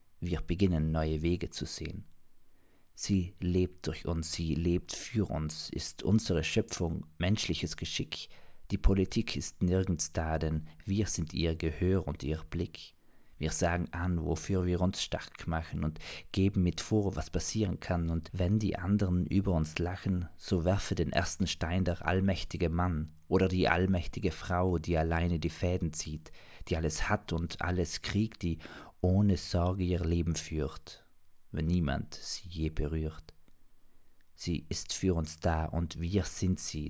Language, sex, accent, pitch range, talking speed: German, male, German, 80-95 Hz, 160 wpm